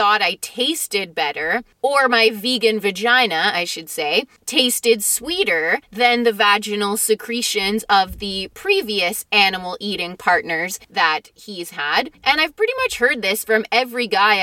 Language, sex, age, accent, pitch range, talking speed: English, female, 30-49, American, 210-300 Hz, 145 wpm